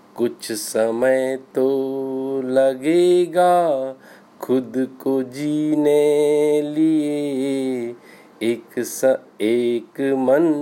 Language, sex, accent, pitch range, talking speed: Hindi, male, native, 130-150 Hz, 70 wpm